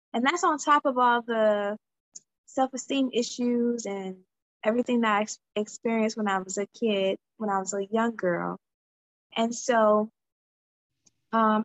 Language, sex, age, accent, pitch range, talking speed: English, female, 20-39, American, 210-260 Hz, 145 wpm